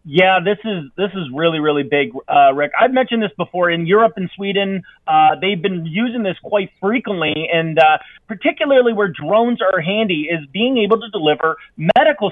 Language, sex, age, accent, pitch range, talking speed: English, male, 30-49, American, 180-220 Hz, 185 wpm